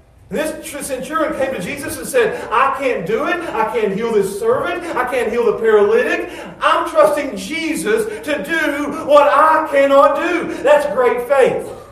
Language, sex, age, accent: English, male, 40-59, American